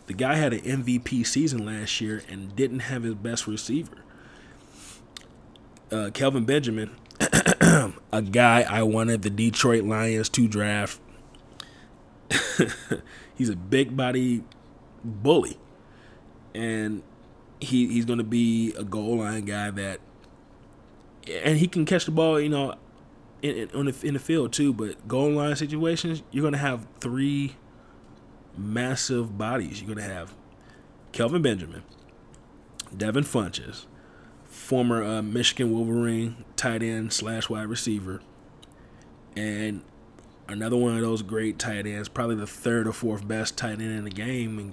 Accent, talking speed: American, 140 wpm